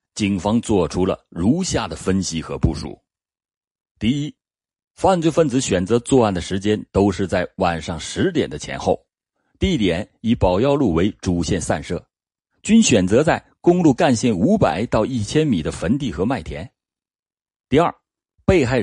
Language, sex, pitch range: Chinese, male, 90-135 Hz